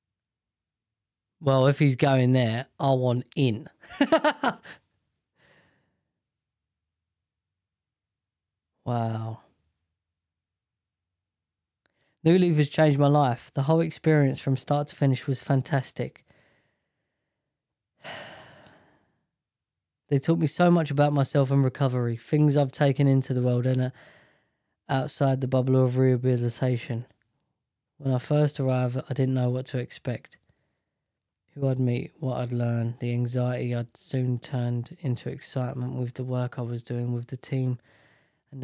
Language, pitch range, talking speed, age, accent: English, 120-135 Hz, 125 wpm, 20-39, British